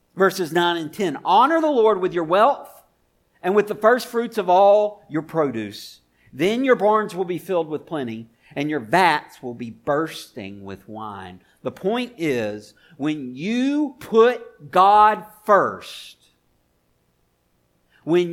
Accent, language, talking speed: American, English, 145 wpm